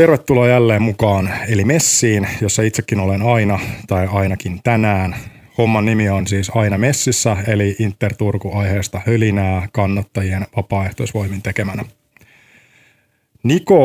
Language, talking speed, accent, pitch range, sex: Finnish, 115 wpm, native, 100-115 Hz, male